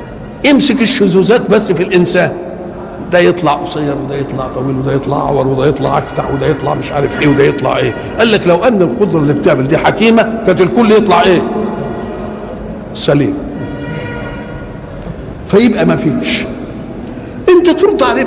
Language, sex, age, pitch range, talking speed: Arabic, male, 60-79, 165-220 Hz, 150 wpm